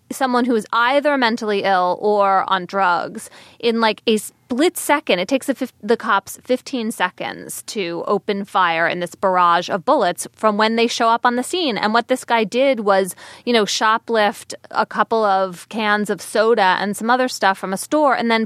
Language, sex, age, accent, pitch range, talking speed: English, female, 20-39, American, 200-275 Hz, 200 wpm